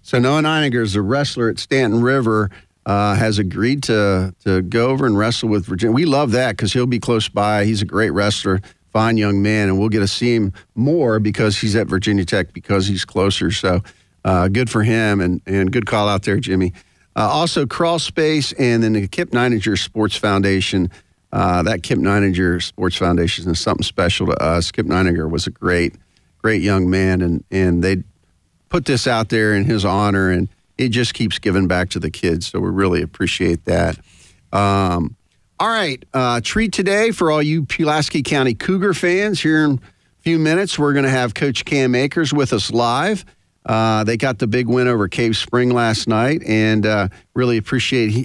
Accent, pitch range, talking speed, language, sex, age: American, 95-130 Hz, 200 wpm, English, male, 50-69